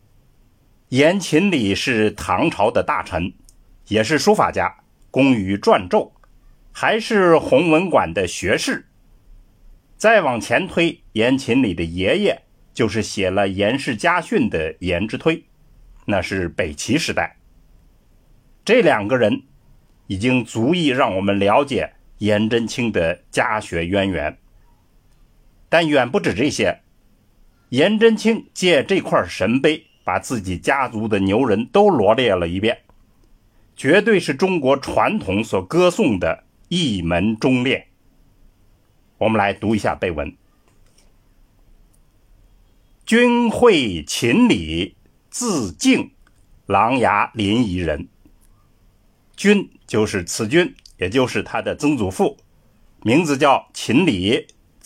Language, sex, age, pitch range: Chinese, male, 60-79, 100-150 Hz